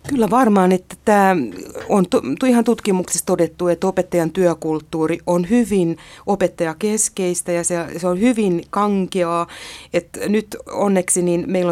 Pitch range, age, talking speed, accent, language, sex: 175-215 Hz, 30-49, 130 wpm, native, Finnish, female